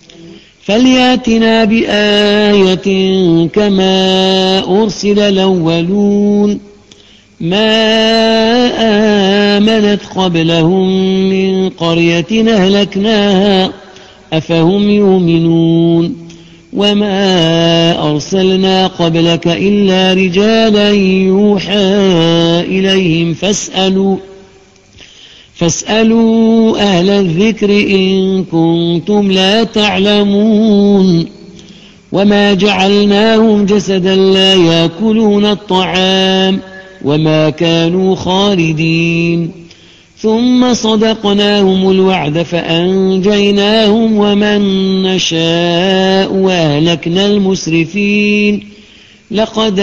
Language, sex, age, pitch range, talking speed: Arabic, male, 50-69, 170-205 Hz, 55 wpm